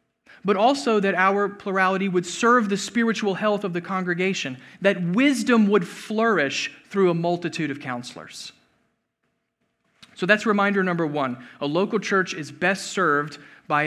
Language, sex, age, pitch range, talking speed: English, male, 40-59, 150-190 Hz, 145 wpm